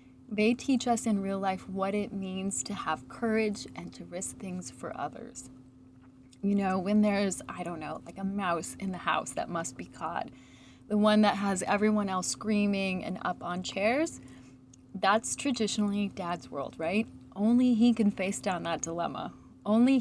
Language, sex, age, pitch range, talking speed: English, female, 30-49, 180-220 Hz, 175 wpm